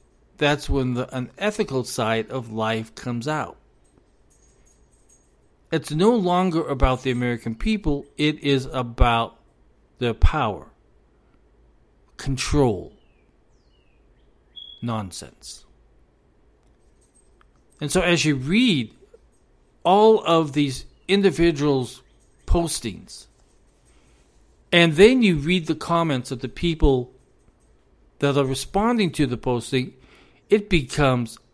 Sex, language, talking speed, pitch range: male, English, 95 wpm, 115-165 Hz